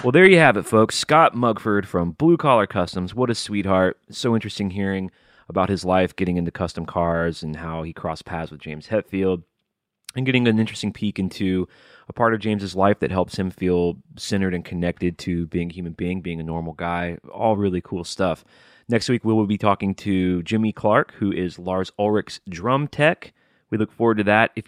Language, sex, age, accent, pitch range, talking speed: English, male, 30-49, American, 90-110 Hz, 205 wpm